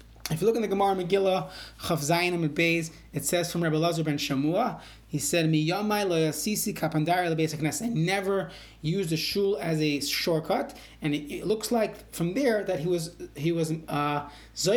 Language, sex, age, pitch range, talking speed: English, male, 30-49, 155-200 Hz, 135 wpm